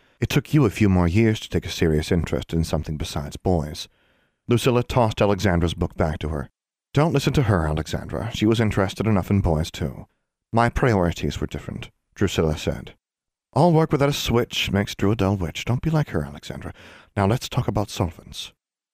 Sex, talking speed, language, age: male, 195 wpm, English, 40-59